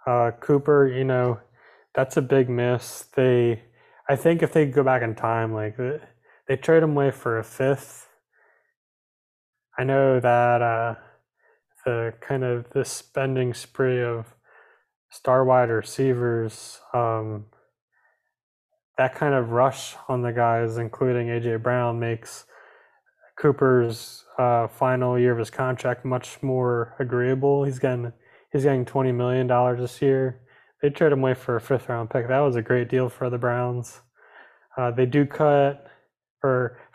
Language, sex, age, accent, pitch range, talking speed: English, male, 20-39, American, 120-135 Hz, 150 wpm